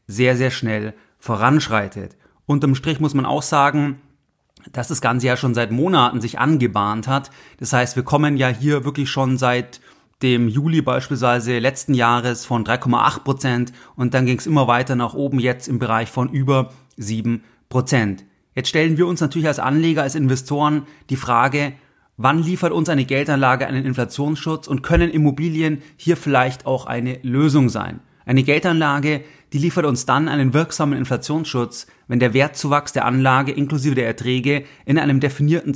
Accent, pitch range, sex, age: German, 125-150 Hz, male, 30-49